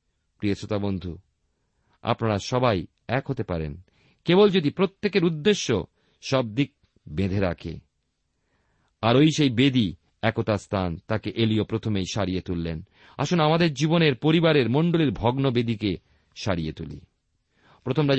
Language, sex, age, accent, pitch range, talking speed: Bengali, male, 50-69, native, 95-145 Hz, 110 wpm